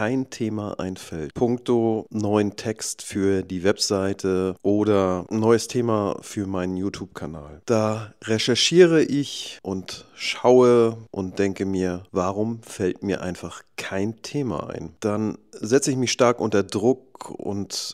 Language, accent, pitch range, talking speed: German, German, 100-125 Hz, 130 wpm